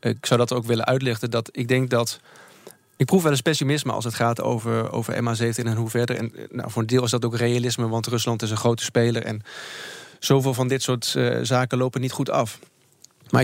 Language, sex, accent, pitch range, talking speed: Dutch, male, Dutch, 115-135 Hz, 230 wpm